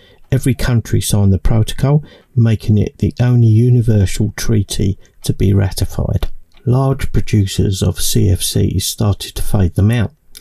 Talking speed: 135 wpm